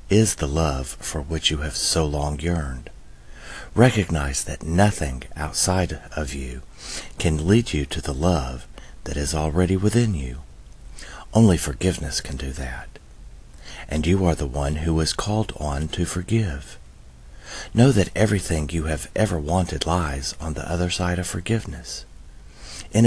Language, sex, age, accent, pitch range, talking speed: English, male, 50-69, American, 65-90 Hz, 150 wpm